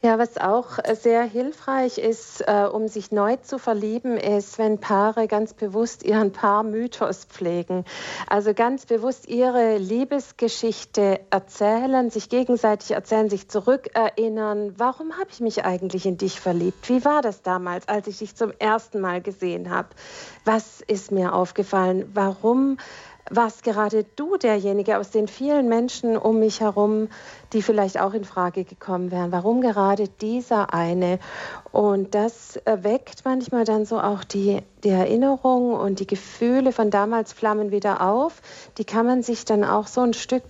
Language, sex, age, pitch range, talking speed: German, female, 50-69, 200-235 Hz, 155 wpm